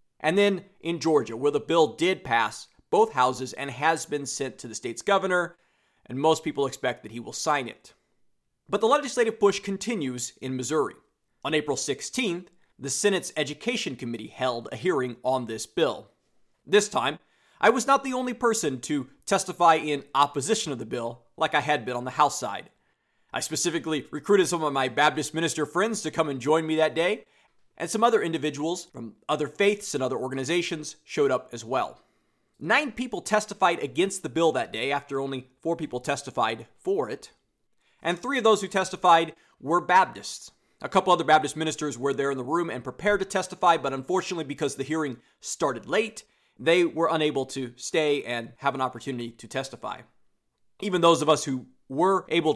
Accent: American